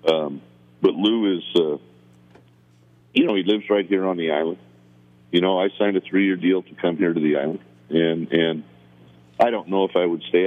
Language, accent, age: English, American, 50-69